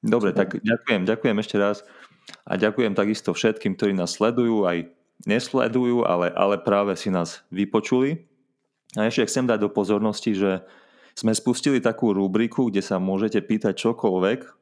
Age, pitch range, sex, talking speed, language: 30-49, 100-115 Hz, male, 150 wpm, Slovak